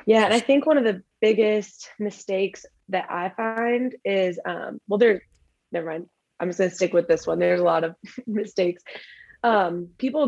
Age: 20-39